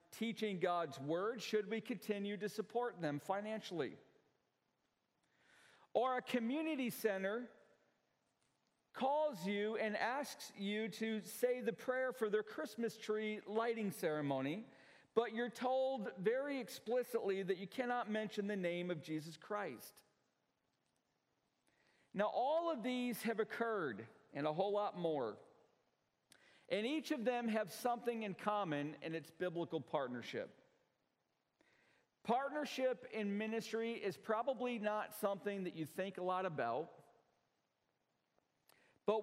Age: 50-69